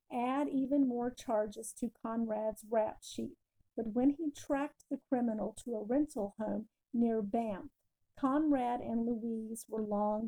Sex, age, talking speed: female, 50-69, 145 wpm